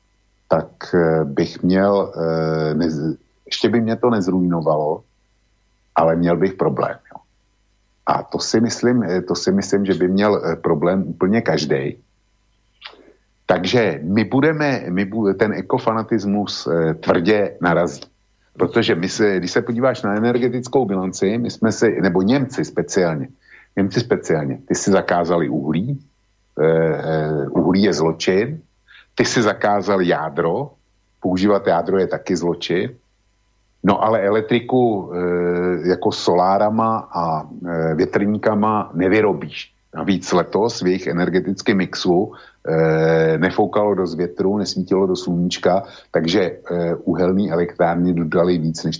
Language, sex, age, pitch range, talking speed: Slovak, male, 60-79, 85-105 Hz, 120 wpm